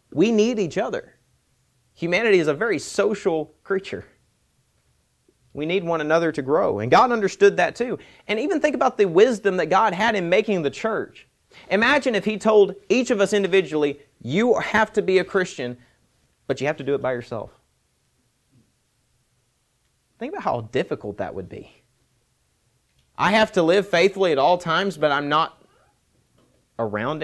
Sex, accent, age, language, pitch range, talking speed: male, American, 30-49, English, 130-200 Hz, 165 wpm